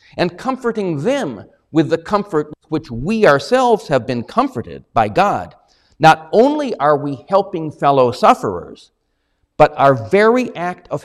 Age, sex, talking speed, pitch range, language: 50-69, male, 140 wpm, 120-205 Hz, English